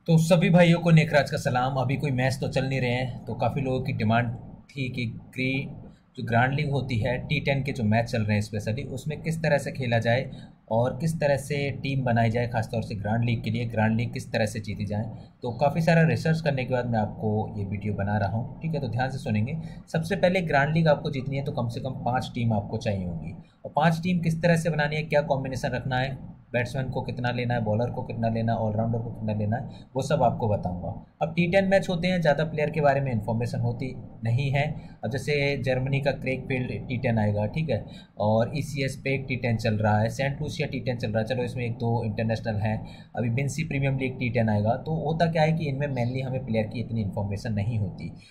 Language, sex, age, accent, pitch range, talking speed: Hindi, male, 30-49, native, 115-145 Hz, 240 wpm